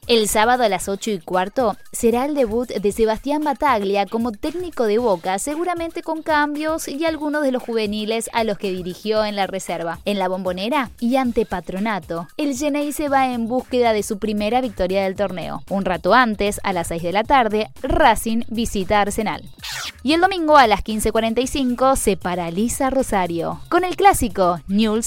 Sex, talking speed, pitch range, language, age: female, 175 wpm, 200-265 Hz, Spanish, 20-39